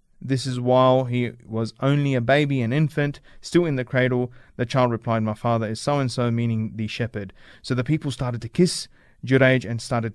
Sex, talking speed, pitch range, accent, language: male, 195 wpm, 120-135 Hz, Australian, English